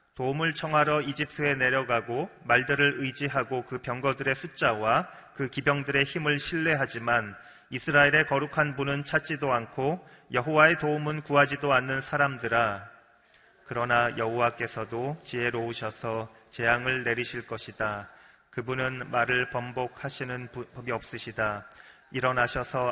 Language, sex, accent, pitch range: Korean, male, native, 120-150 Hz